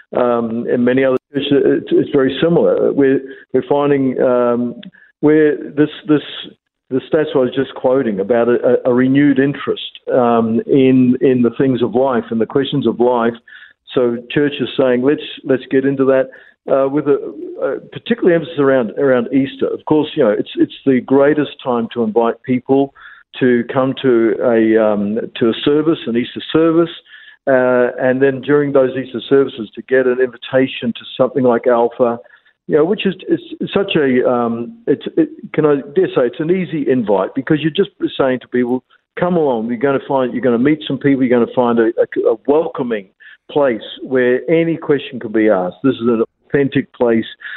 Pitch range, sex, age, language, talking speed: 120-145 Hz, male, 50-69, English, 190 wpm